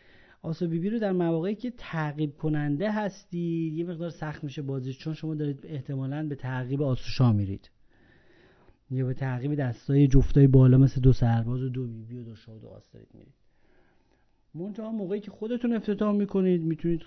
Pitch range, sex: 125-160 Hz, male